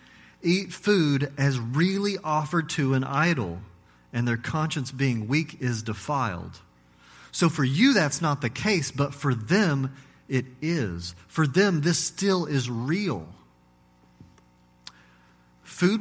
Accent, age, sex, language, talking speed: American, 40-59, male, English, 125 wpm